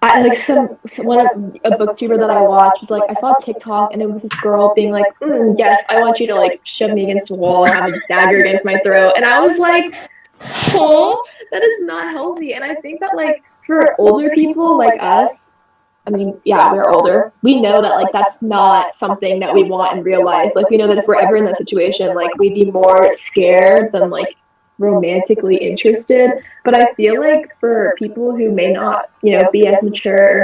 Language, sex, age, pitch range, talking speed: English, female, 10-29, 190-230 Hz, 225 wpm